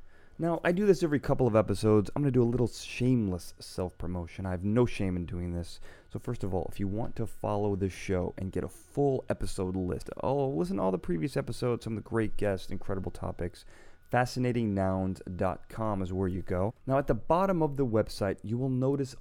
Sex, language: male, English